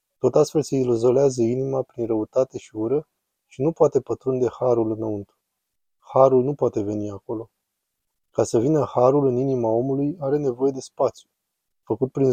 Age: 20-39